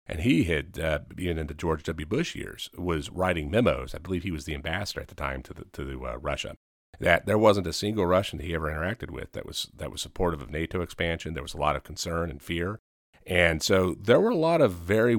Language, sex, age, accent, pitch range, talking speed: English, male, 40-59, American, 80-95 Hz, 250 wpm